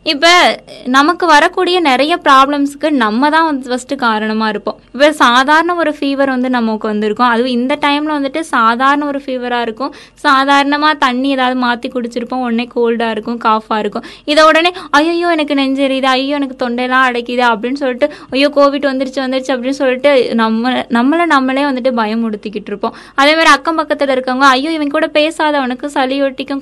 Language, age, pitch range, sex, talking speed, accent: Tamil, 20-39, 245-300 Hz, female, 160 wpm, native